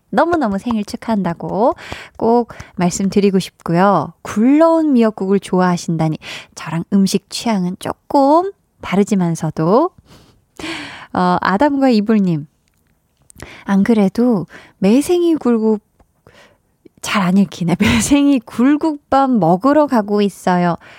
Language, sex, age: Korean, female, 20-39